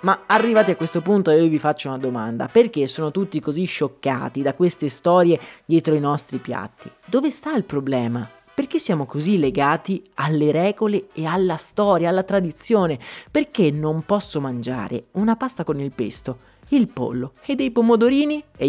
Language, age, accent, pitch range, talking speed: Italian, 30-49, native, 140-200 Hz, 165 wpm